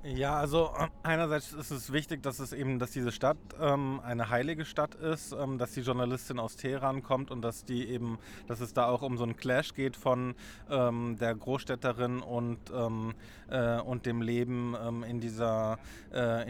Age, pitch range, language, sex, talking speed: 20-39, 120-135 Hz, German, male, 185 wpm